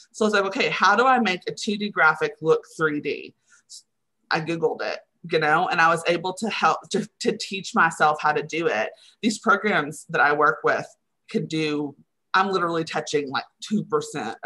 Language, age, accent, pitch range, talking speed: English, 30-49, American, 160-220 Hz, 190 wpm